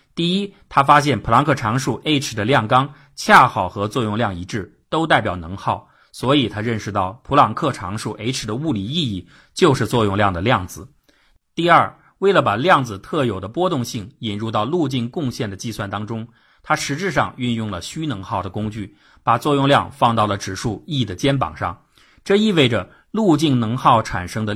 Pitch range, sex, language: 105-140 Hz, male, Chinese